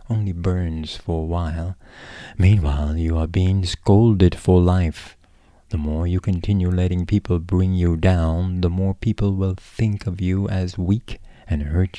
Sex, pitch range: male, 85-105 Hz